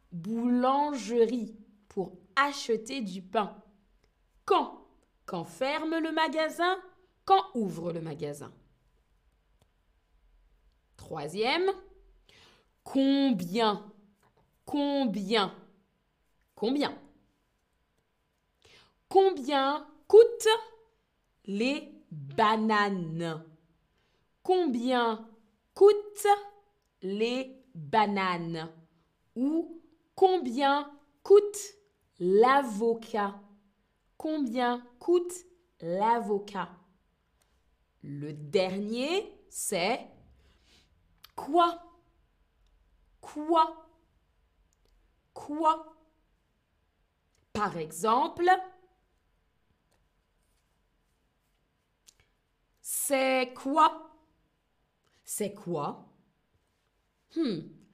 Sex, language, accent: female, French, French